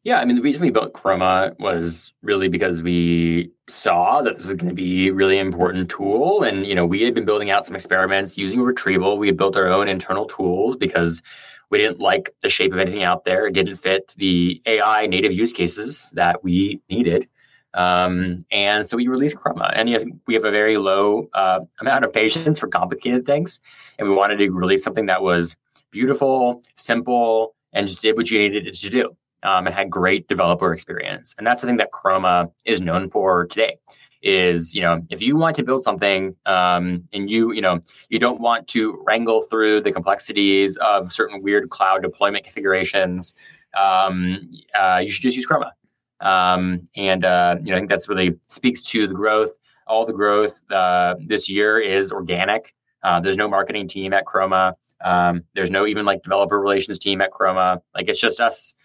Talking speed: 200 wpm